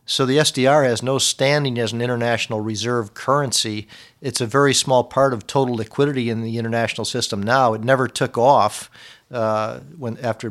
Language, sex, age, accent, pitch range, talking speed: English, male, 50-69, American, 110-130 Hz, 175 wpm